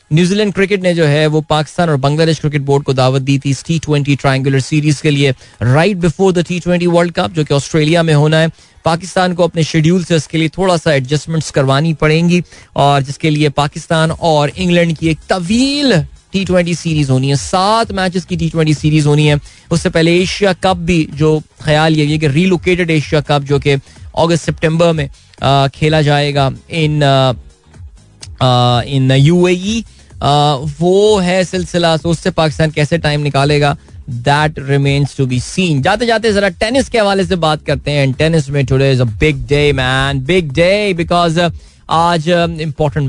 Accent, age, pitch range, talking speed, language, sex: native, 20-39, 135-175 Hz, 150 wpm, Hindi, male